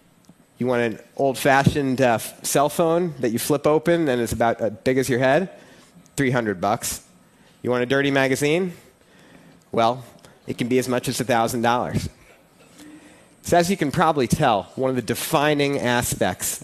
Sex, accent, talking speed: male, American, 160 wpm